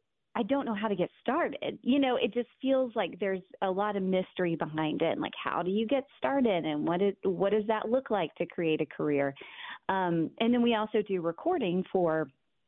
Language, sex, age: English, female, 30-49